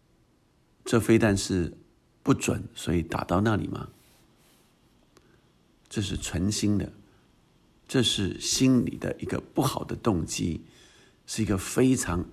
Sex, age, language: male, 50-69, Chinese